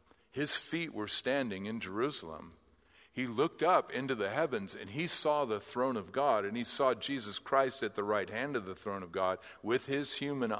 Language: English